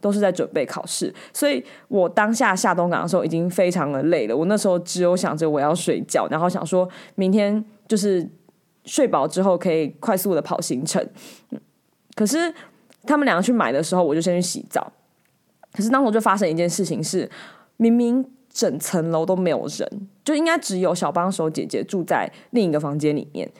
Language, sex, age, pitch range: Chinese, female, 20-39, 175-230 Hz